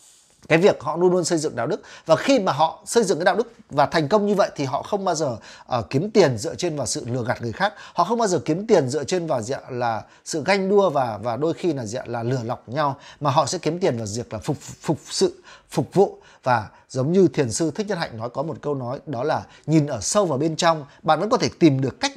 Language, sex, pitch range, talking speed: Vietnamese, male, 130-185 Hz, 285 wpm